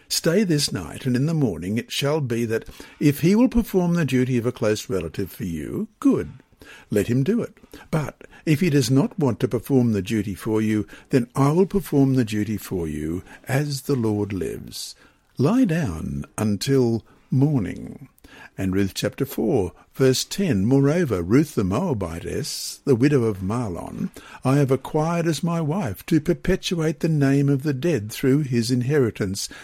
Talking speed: 175 wpm